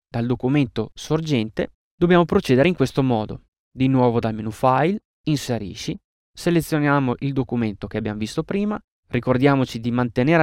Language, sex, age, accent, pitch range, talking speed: Italian, male, 20-39, native, 120-160 Hz, 140 wpm